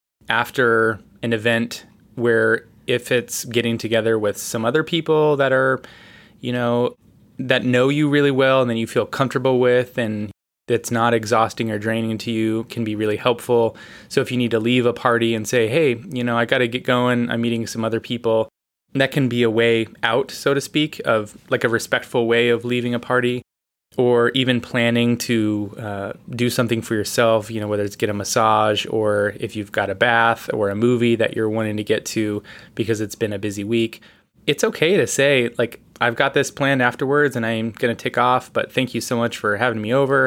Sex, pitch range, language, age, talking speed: male, 110-125 Hz, English, 20-39, 210 wpm